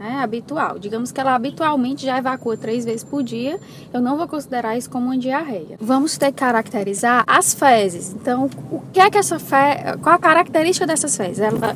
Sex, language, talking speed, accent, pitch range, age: female, Portuguese, 200 wpm, Brazilian, 220-290 Hz, 10-29